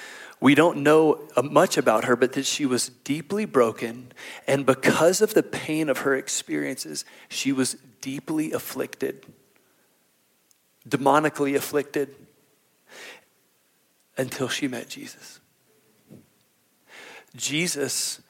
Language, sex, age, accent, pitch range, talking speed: English, male, 40-59, American, 130-160 Hz, 100 wpm